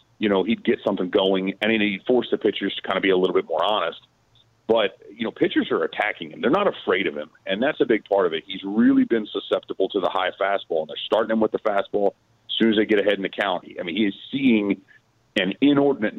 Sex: male